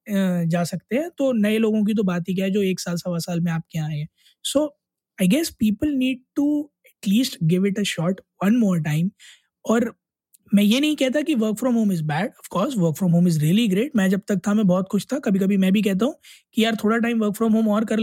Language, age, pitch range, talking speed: Hindi, 20-39, 185-235 Hz, 235 wpm